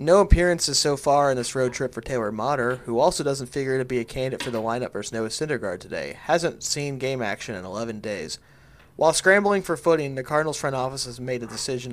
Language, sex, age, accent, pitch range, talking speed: English, male, 30-49, American, 115-145 Hz, 225 wpm